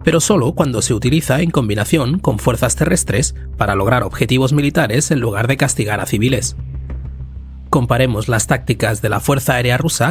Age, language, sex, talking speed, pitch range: 30-49, Spanish, male, 165 wpm, 105-145 Hz